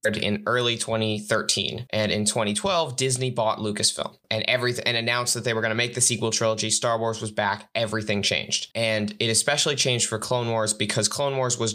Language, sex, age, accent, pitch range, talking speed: English, male, 20-39, American, 110-125 Hz, 200 wpm